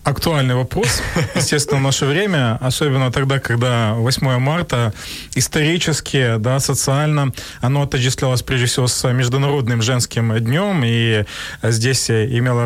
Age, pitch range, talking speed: 20-39, 130-160 Hz, 120 wpm